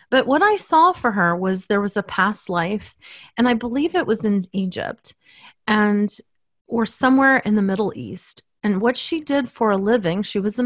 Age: 30-49